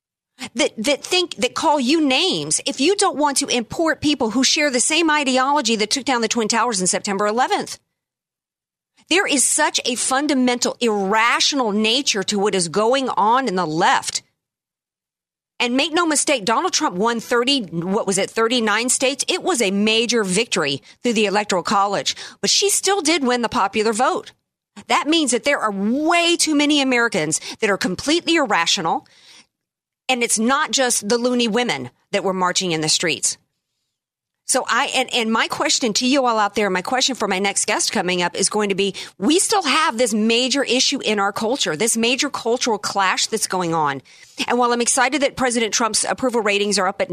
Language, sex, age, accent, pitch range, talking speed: English, female, 40-59, American, 200-270 Hz, 190 wpm